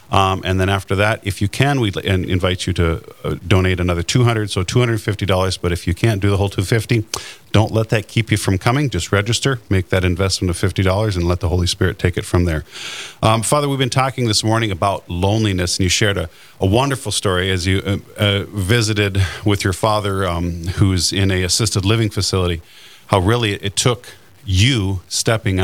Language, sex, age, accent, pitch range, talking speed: English, male, 40-59, American, 90-110 Hz, 205 wpm